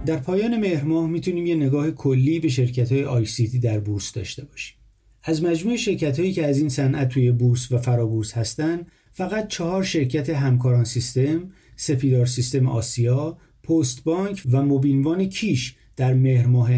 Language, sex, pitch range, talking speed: Persian, male, 120-160 Hz, 145 wpm